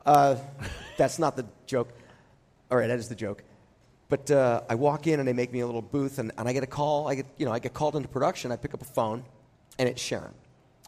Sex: male